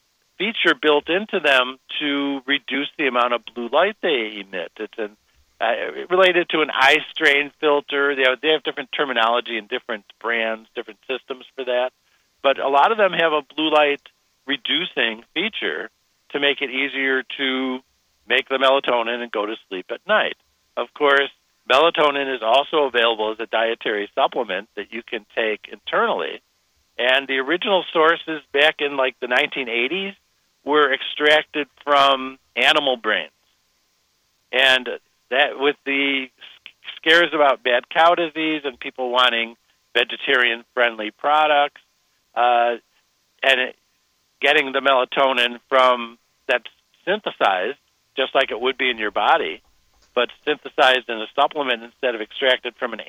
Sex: male